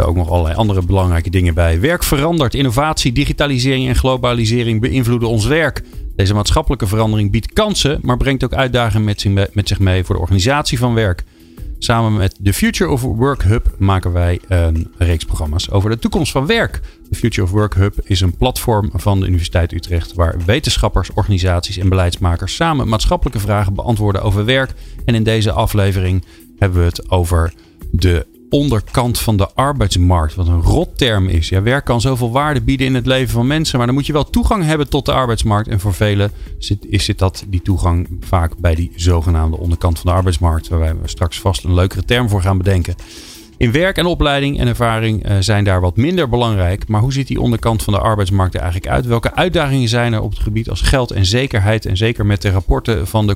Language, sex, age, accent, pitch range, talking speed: Dutch, male, 40-59, Dutch, 90-120 Hz, 200 wpm